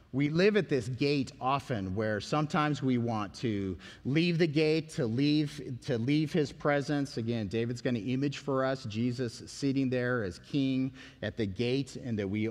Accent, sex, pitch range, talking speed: American, male, 115-145 Hz, 180 wpm